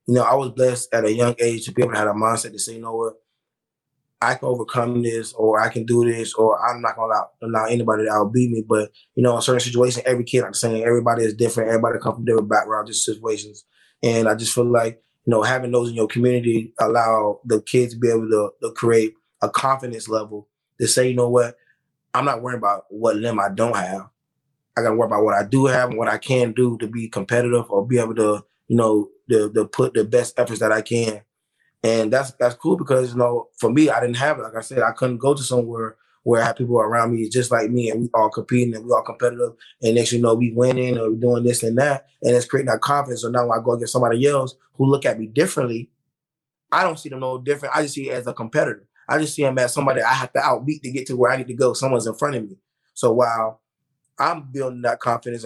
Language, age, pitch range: English, 20-39, 115-130 Hz